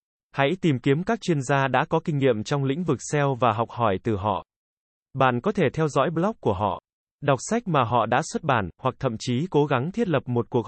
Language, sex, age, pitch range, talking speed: Vietnamese, male, 20-39, 120-155 Hz, 240 wpm